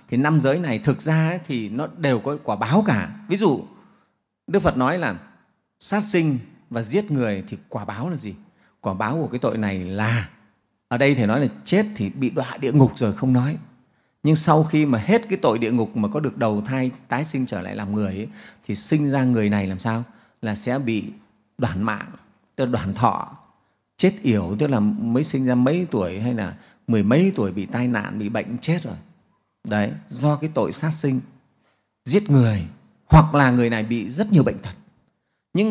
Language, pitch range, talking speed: Vietnamese, 115-170 Hz, 205 wpm